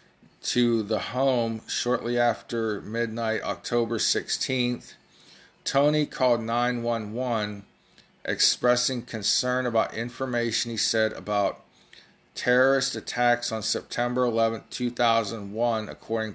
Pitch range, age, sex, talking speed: 110-125 Hz, 40-59, male, 90 wpm